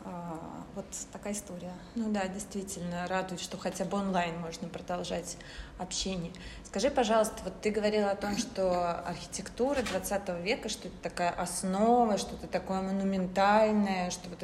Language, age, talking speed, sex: Russian, 30-49, 145 wpm, female